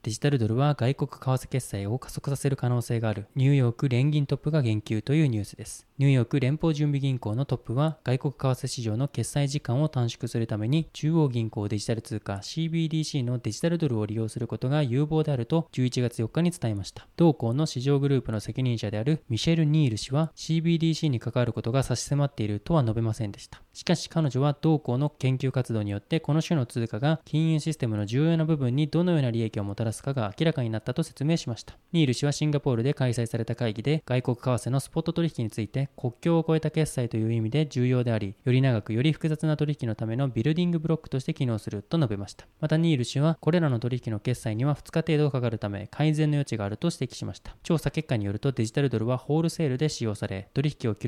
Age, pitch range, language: 20-39, 115-155 Hz, Japanese